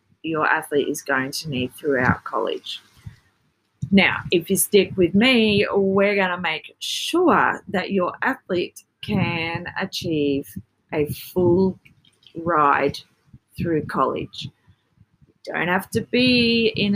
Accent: Australian